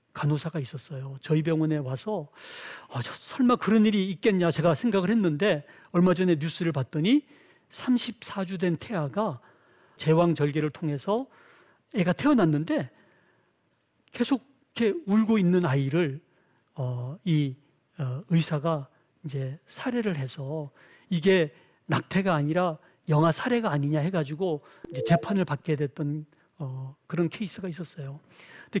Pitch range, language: 150-195 Hz, Korean